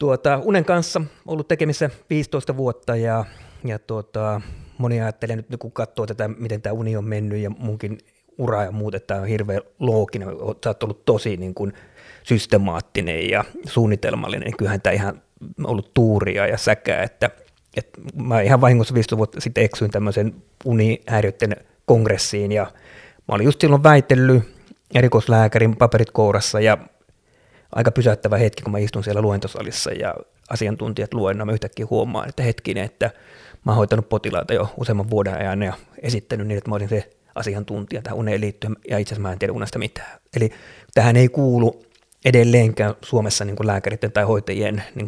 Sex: male